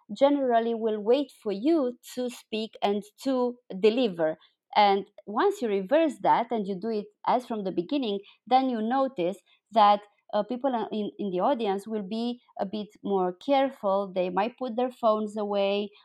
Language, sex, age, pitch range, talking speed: Polish, female, 30-49, 200-245 Hz, 170 wpm